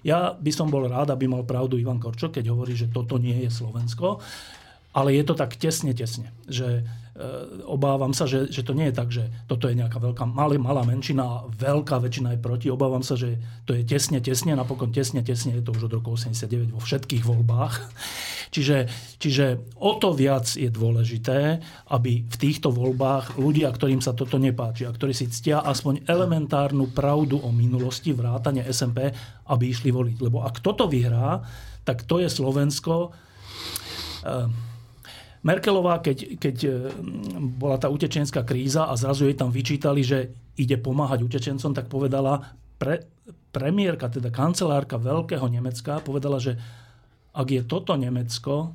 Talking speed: 165 wpm